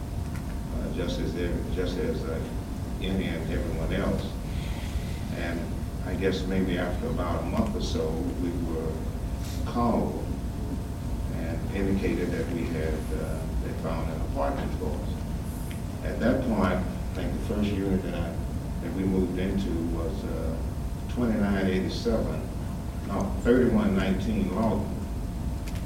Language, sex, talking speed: English, male, 110 wpm